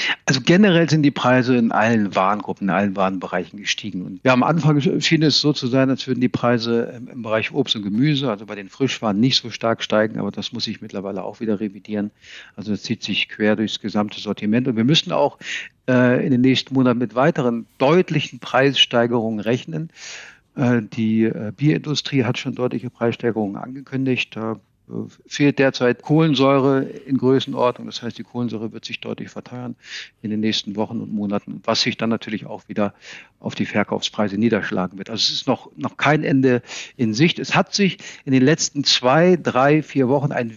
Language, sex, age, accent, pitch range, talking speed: German, male, 60-79, German, 110-135 Hz, 190 wpm